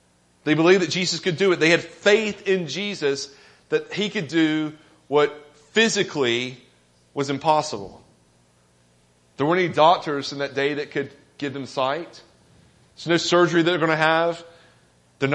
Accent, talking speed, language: American, 160 wpm, English